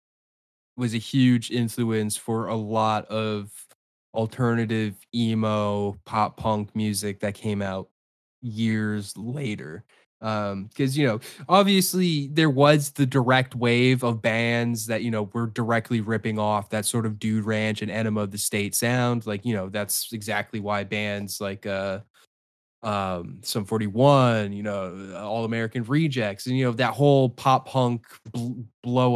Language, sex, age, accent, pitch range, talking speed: English, male, 10-29, American, 105-125 Hz, 150 wpm